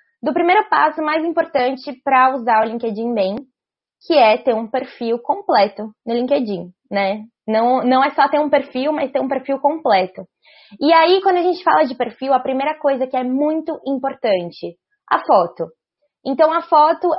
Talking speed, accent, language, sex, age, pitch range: 180 wpm, Brazilian, Portuguese, female, 20-39, 225-300 Hz